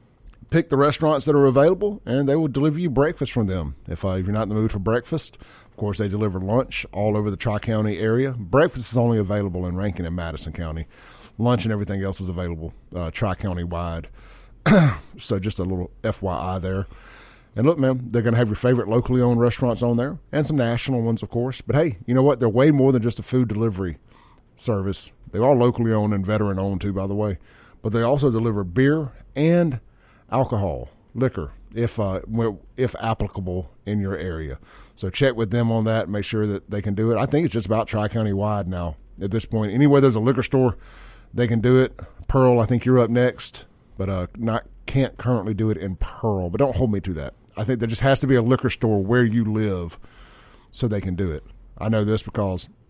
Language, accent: English, American